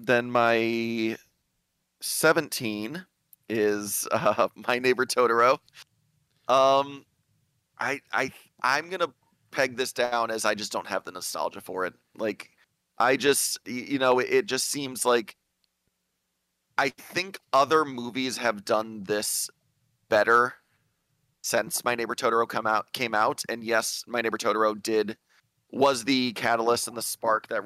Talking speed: 135 wpm